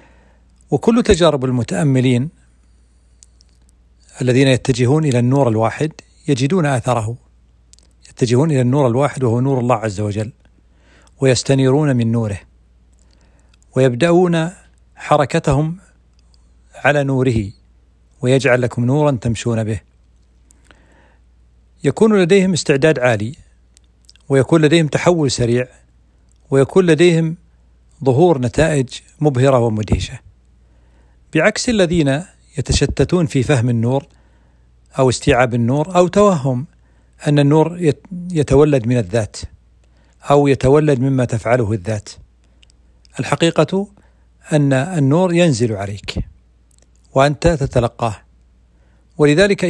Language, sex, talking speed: Arabic, male, 90 wpm